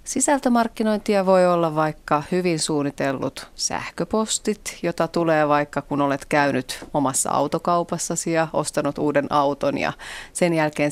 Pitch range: 145-180 Hz